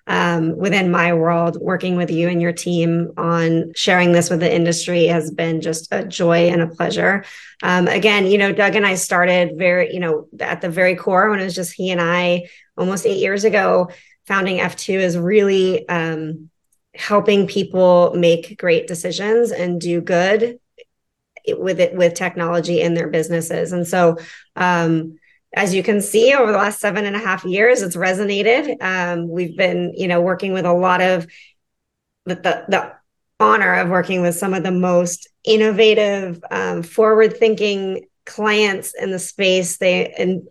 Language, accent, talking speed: English, American, 175 wpm